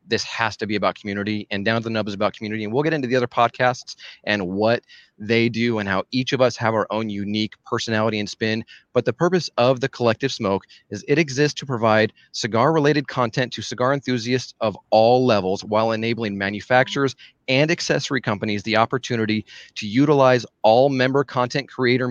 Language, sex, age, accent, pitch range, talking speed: English, male, 30-49, American, 105-130 Hz, 195 wpm